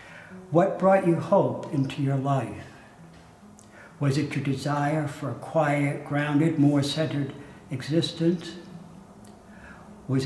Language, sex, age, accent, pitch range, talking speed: English, male, 60-79, American, 135-165 Hz, 110 wpm